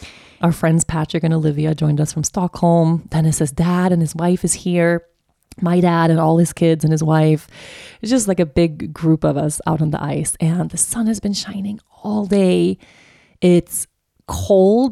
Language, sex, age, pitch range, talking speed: English, female, 30-49, 160-200 Hz, 190 wpm